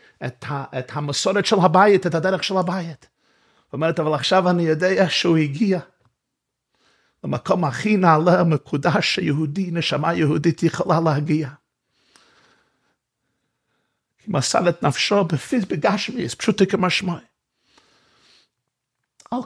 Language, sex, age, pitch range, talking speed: Hebrew, male, 50-69, 155-215 Hz, 100 wpm